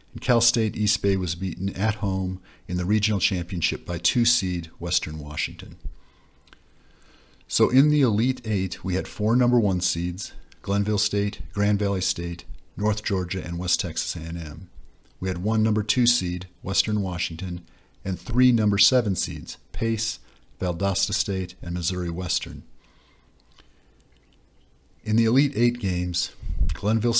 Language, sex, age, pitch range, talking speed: English, male, 50-69, 85-110 Hz, 140 wpm